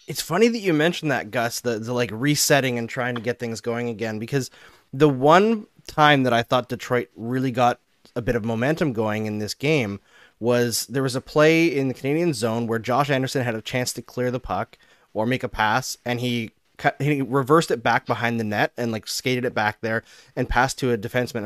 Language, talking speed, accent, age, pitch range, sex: English, 220 wpm, American, 20-39, 115-140 Hz, male